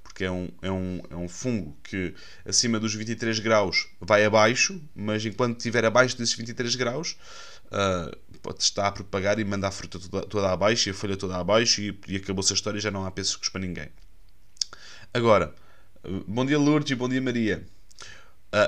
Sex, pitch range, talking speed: male, 95-130 Hz, 195 wpm